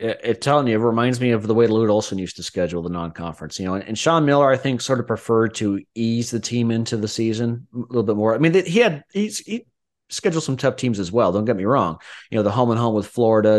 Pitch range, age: 100-120 Hz, 30-49